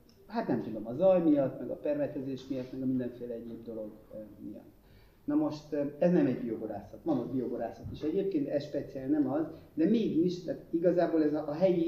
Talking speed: 195 wpm